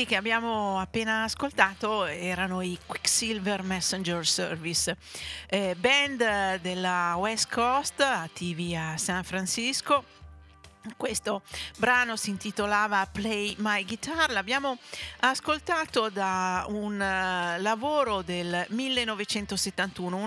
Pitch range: 185-235 Hz